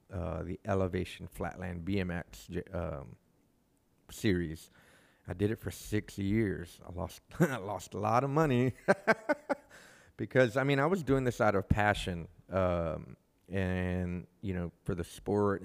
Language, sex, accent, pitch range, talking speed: English, male, American, 90-105 Hz, 145 wpm